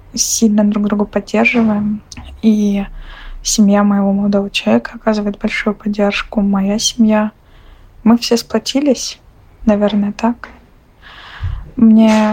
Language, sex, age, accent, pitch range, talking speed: Russian, female, 20-39, native, 205-225 Hz, 95 wpm